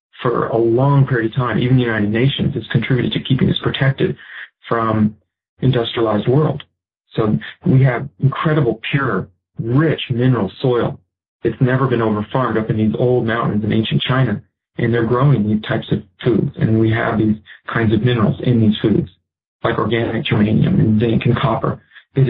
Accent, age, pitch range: American, 40-59, 110-135 Hz